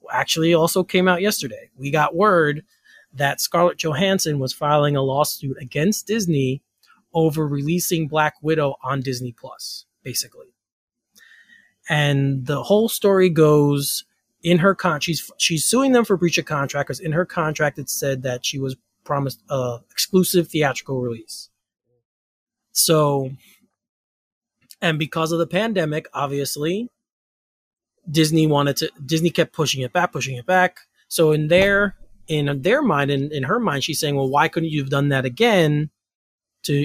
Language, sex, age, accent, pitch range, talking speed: English, male, 30-49, American, 135-175 Hz, 155 wpm